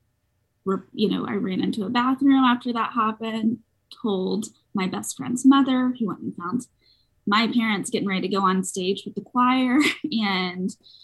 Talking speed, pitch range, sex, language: 170 wpm, 175-245 Hz, female, English